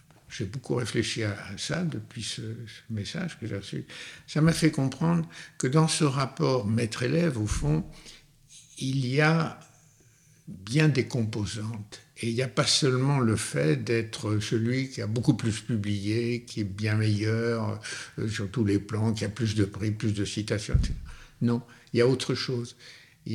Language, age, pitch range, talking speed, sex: French, 60-79, 110-145 Hz, 175 wpm, male